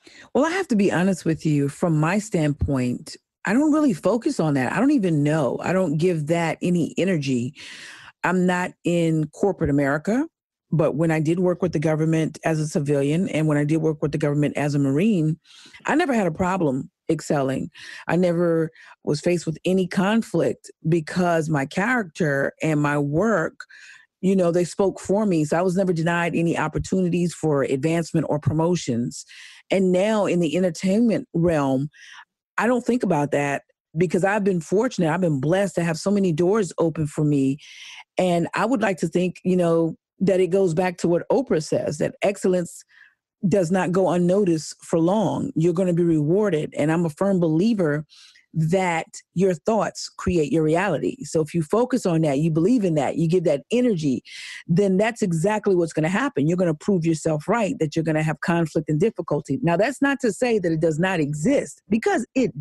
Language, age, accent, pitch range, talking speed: English, 40-59, American, 155-195 Hz, 190 wpm